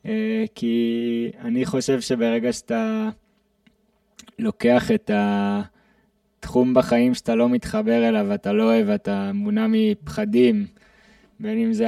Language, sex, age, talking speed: Hebrew, male, 20-39, 110 wpm